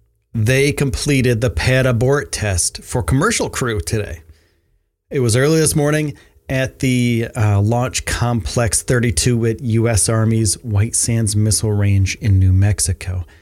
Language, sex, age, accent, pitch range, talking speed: English, male, 30-49, American, 85-130 Hz, 140 wpm